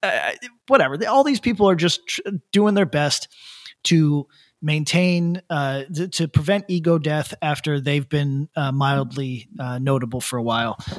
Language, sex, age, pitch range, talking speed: English, male, 30-49, 135-175 Hz, 160 wpm